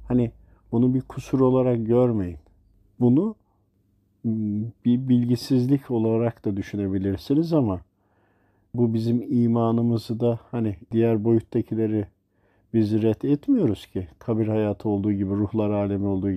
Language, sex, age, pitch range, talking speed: Turkish, male, 50-69, 100-125 Hz, 115 wpm